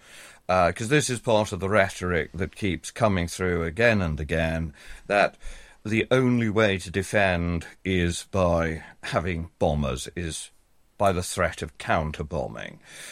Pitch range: 85-110 Hz